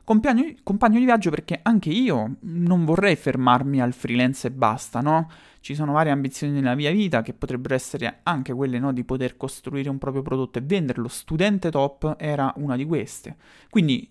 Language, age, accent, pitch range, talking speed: Italian, 30-49, native, 135-180 Hz, 180 wpm